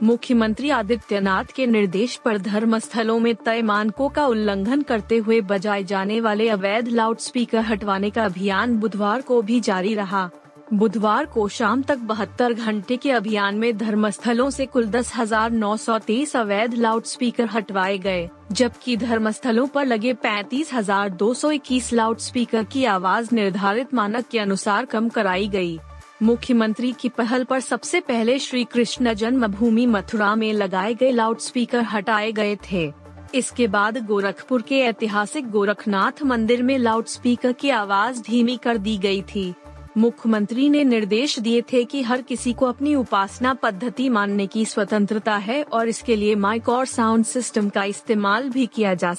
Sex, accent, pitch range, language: female, native, 205-245 Hz, Hindi